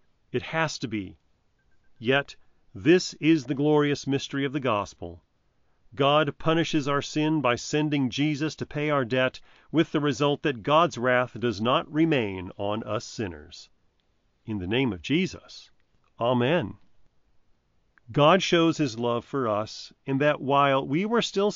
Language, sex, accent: English, male, American